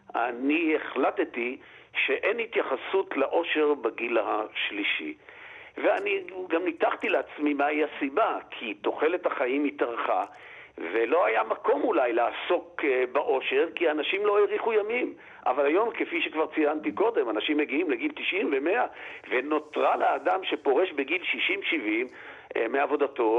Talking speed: 115 wpm